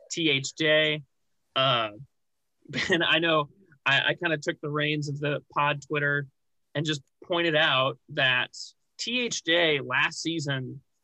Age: 30-49